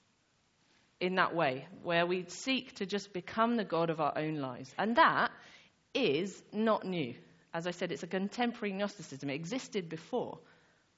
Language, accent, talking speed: English, British, 165 wpm